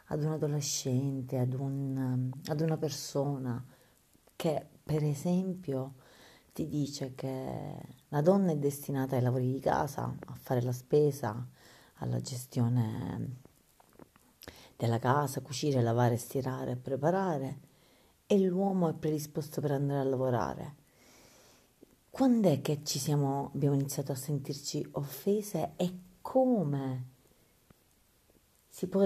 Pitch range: 130-155 Hz